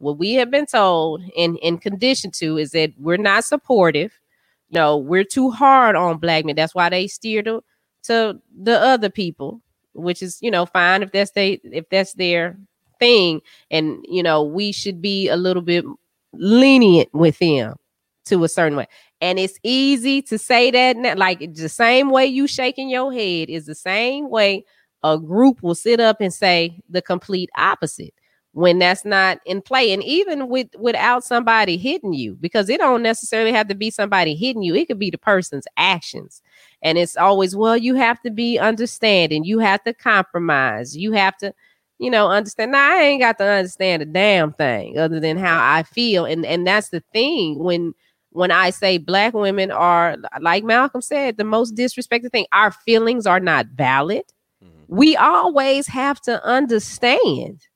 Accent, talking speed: American, 185 wpm